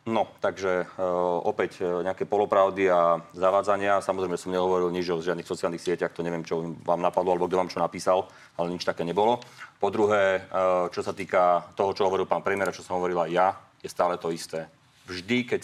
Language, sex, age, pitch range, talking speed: Slovak, male, 40-59, 90-120 Hz, 200 wpm